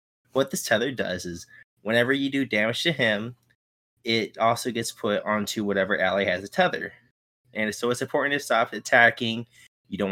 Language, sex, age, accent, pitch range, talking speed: English, male, 20-39, American, 100-120 Hz, 180 wpm